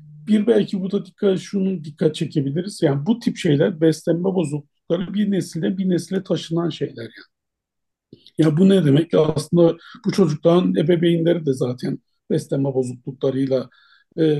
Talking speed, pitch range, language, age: 145 wpm, 155-190 Hz, Turkish, 50-69